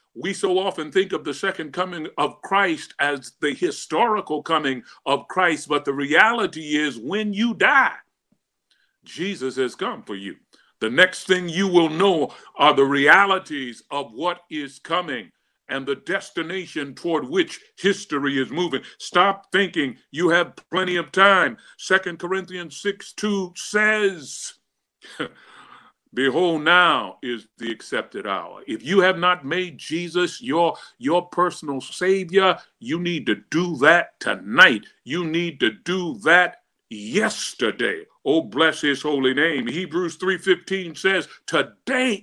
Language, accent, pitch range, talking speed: English, American, 150-195 Hz, 140 wpm